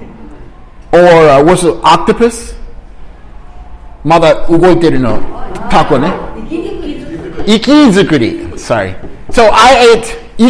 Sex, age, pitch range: male, 30-49, 150-240 Hz